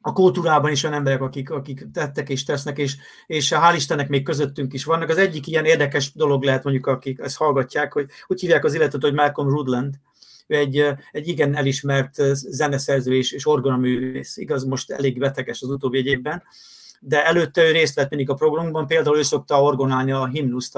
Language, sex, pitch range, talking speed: Hungarian, male, 135-155 Hz, 190 wpm